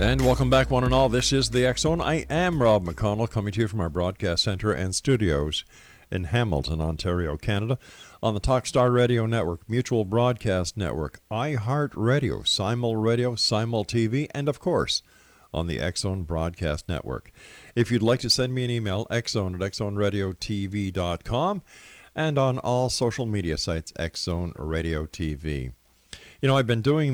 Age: 50-69